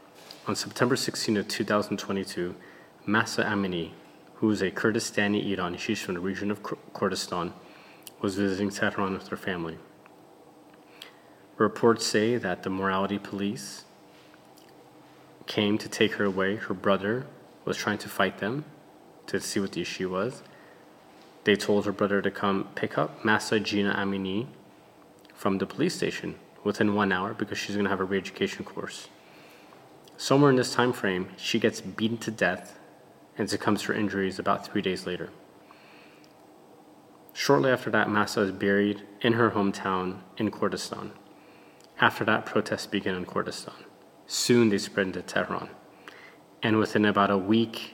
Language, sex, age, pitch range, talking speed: English, male, 20-39, 95-110 Hz, 150 wpm